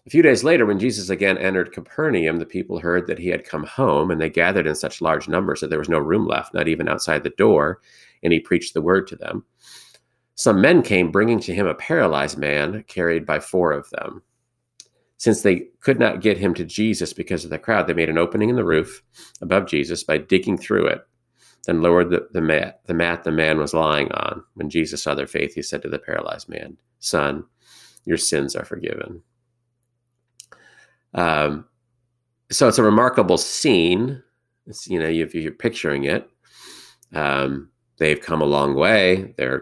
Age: 40-59